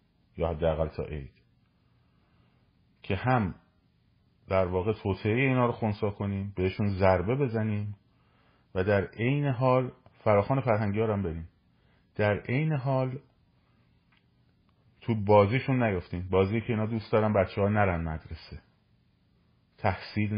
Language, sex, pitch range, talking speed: Persian, male, 90-115 Hz, 120 wpm